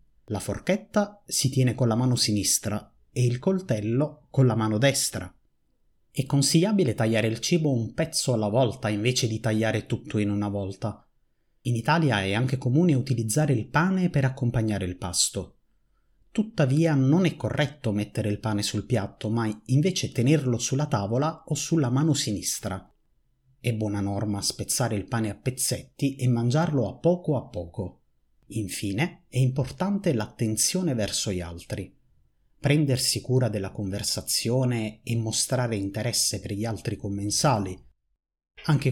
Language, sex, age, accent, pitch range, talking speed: Italian, male, 30-49, native, 105-140 Hz, 145 wpm